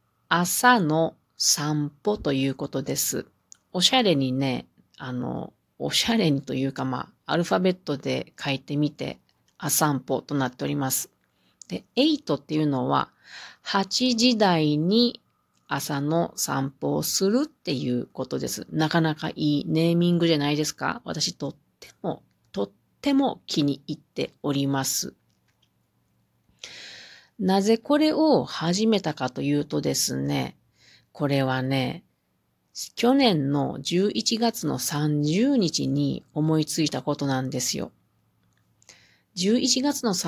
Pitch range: 135-175 Hz